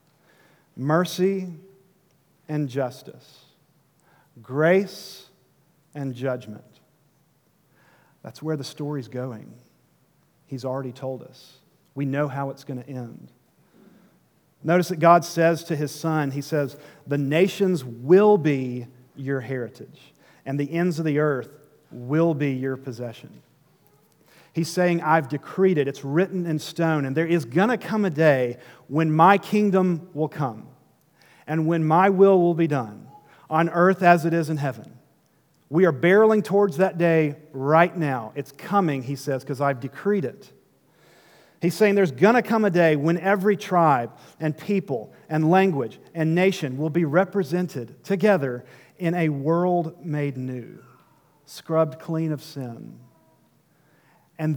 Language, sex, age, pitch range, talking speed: English, male, 50-69, 140-175 Hz, 145 wpm